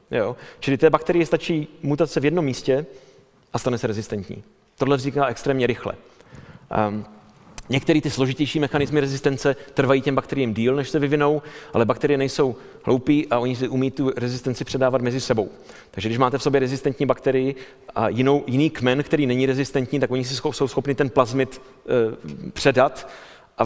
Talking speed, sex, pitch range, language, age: 170 wpm, male, 130-160 Hz, Czech, 40-59